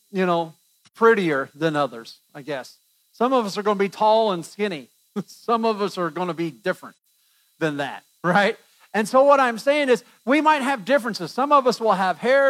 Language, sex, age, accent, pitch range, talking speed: English, male, 50-69, American, 195-260 Hz, 210 wpm